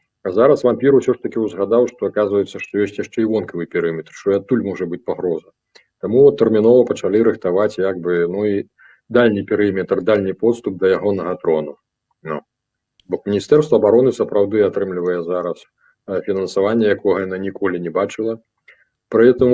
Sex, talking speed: male, 140 wpm